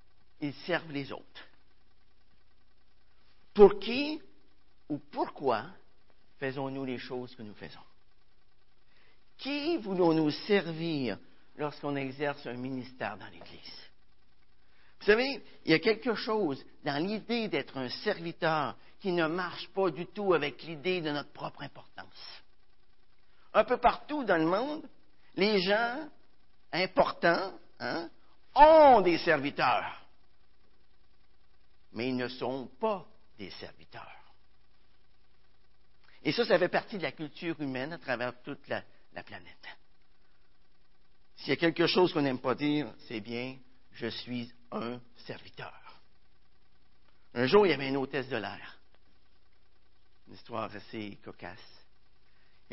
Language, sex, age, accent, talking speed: French, male, 50-69, French, 125 wpm